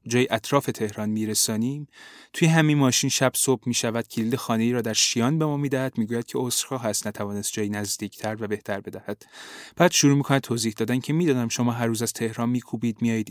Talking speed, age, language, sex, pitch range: 190 wpm, 30-49, Persian, male, 110-130 Hz